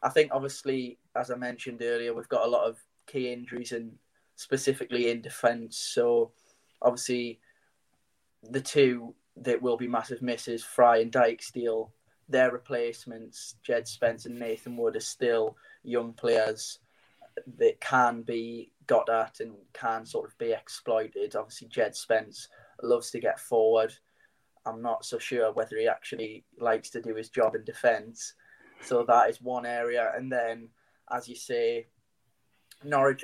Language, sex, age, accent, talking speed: English, male, 10-29, British, 150 wpm